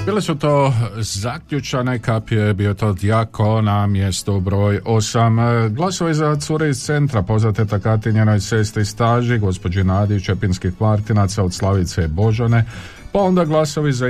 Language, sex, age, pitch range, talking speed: Croatian, male, 50-69, 95-115 Hz, 145 wpm